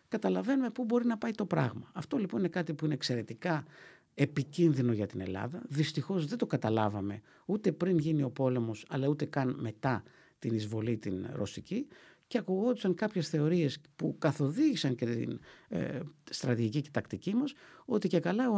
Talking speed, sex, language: 170 wpm, male, Greek